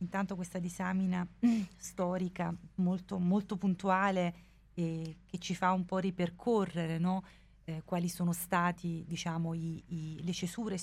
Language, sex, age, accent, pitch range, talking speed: Italian, female, 30-49, native, 165-185 Hz, 135 wpm